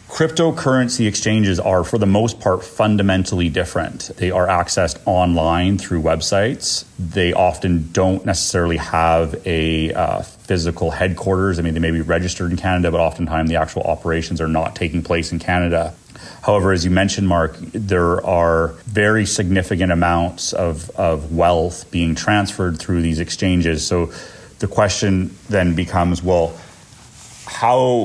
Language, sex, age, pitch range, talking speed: English, male, 30-49, 85-95 Hz, 145 wpm